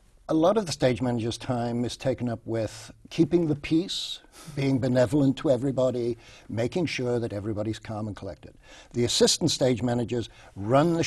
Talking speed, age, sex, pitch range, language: 170 wpm, 60-79, male, 110-130 Hz, English